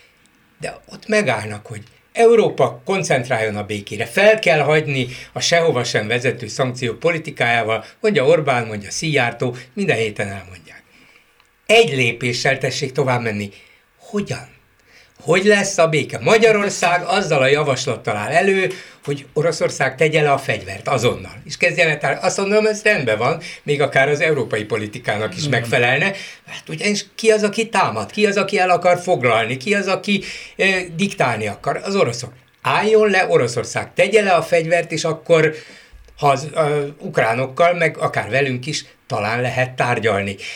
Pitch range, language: 130-190 Hz, Hungarian